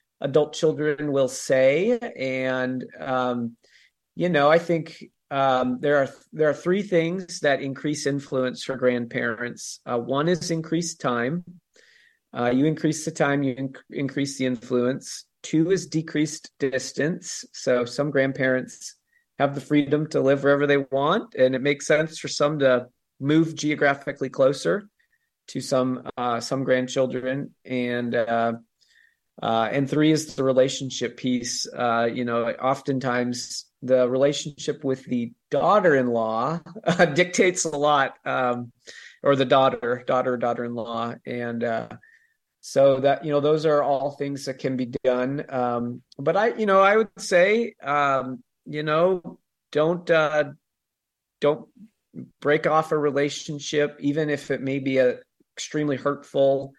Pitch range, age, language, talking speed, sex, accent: 125-155 Hz, 40-59, English, 145 wpm, male, American